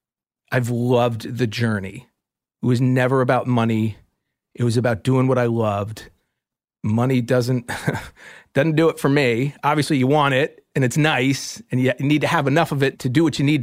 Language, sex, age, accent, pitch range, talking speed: English, male, 40-59, American, 125-170 Hz, 190 wpm